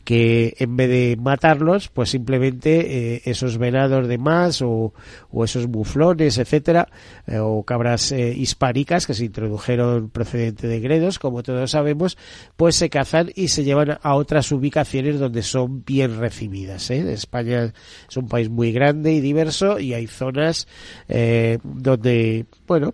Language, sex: Spanish, male